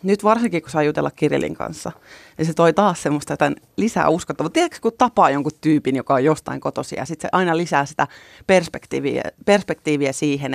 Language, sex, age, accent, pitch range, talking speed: Finnish, female, 30-49, native, 150-170 Hz, 190 wpm